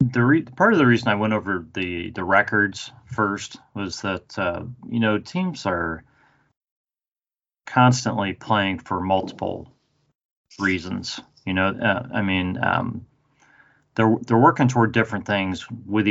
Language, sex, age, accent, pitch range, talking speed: English, male, 30-49, American, 95-120 Hz, 140 wpm